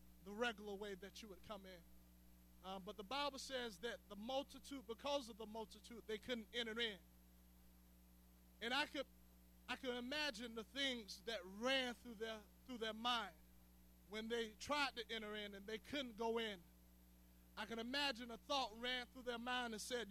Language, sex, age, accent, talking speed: English, male, 20-39, American, 180 wpm